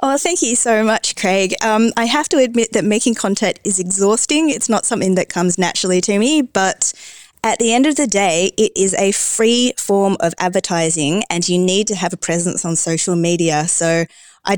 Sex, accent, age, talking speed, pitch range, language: female, Australian, 20-39, 205 wpm, 170-220 Hz, English